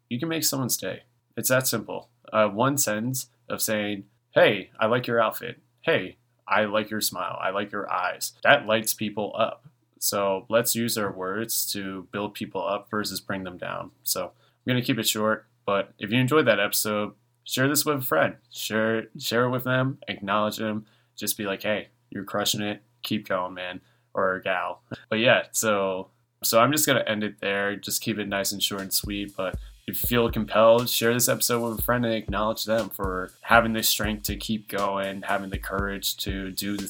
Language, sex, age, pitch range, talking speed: English, male, 20-39, 95-115 Hz, 205 wpm